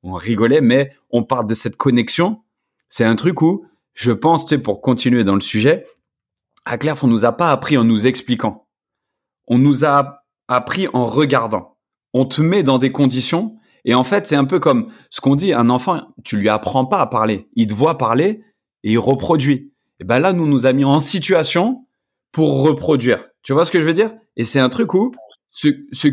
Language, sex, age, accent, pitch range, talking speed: French, male, 30-49, French, 120-170 Hz, 215 wpm